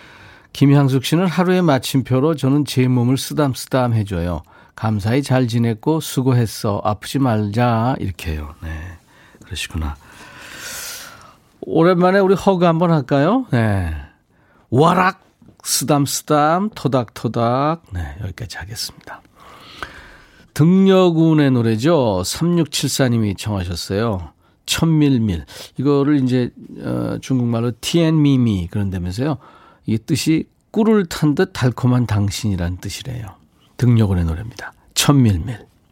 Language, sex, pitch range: Korean, male, 100-145 Hz